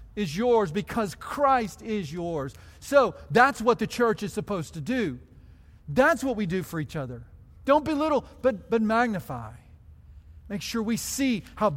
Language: English